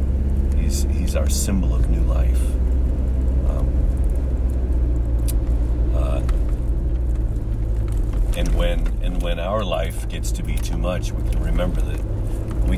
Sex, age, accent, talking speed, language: male, 40-59, American, 115 wpm, English